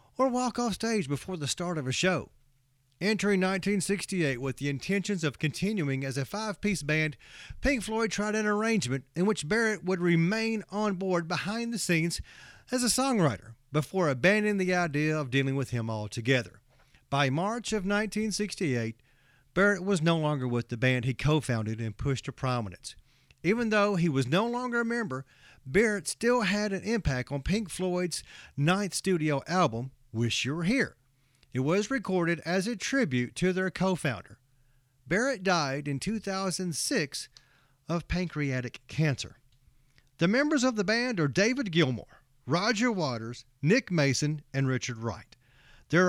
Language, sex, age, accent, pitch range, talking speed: English, male, 40-59, American, 135-210 Hz, 155 wpm